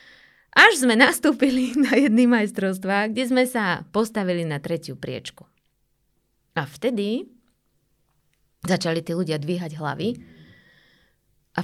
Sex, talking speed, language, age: female, 110 wpm, Slovak, 20-39